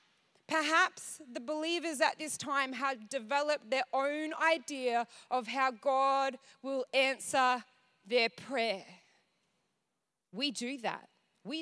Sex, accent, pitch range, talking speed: female, Australian, 195-290 Hz, 115 wpm